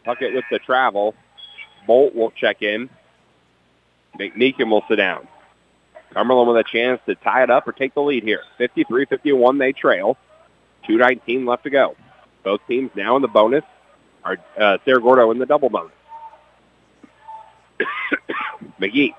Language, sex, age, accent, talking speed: English, male, 40-59, American, 145 wpm